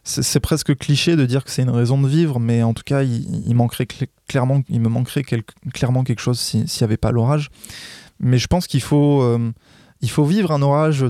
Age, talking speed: 20-39, 240 wpm